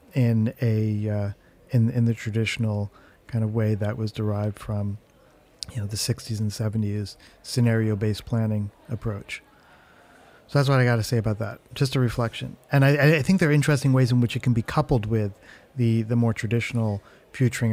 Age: 40-59